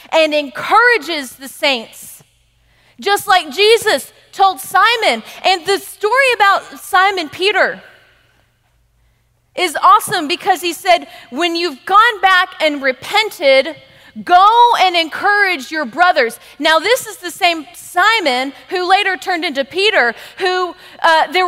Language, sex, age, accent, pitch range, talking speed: English, female, 30-49, American, 290-375 Hz, 125 wpm